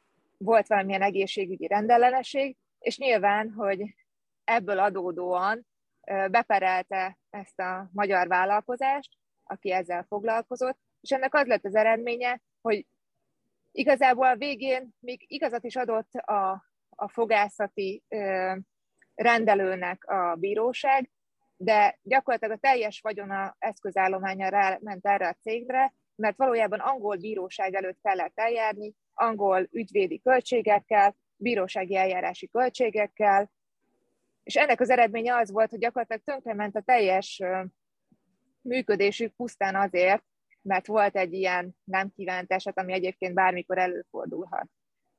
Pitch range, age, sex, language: 190-240 Hz, 30-49, female, Hungarian